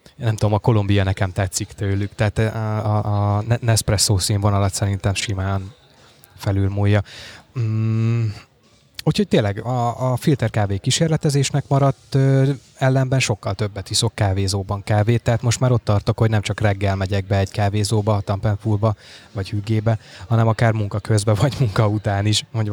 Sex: male